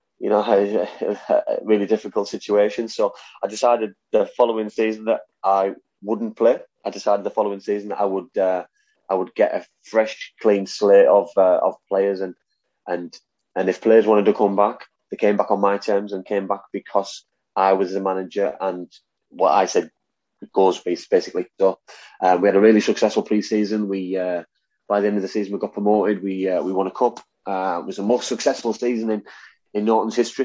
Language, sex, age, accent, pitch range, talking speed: English, male, 20-39, British, 95-110 Hz, 205 wpm